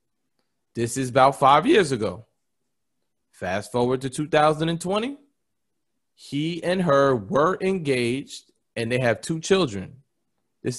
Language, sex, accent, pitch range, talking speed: English, male, American, 125-170 Hz, 115 wpm